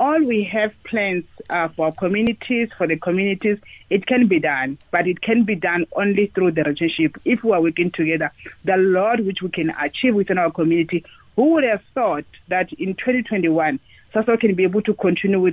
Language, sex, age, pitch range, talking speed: English, female, 40-59, 175-225 Hz, 200 wpm